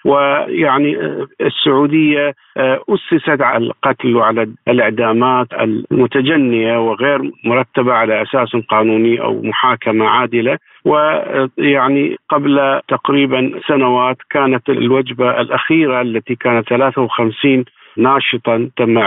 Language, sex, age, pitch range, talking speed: Arabic, male, 50-69, 115-145 Hz, 90 wpm